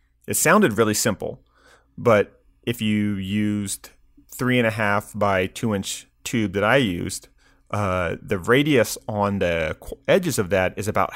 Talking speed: 155 wpm